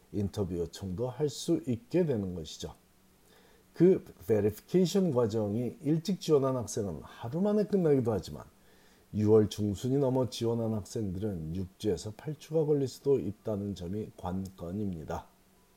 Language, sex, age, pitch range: Korean, male, 40-59, 100-140 Hz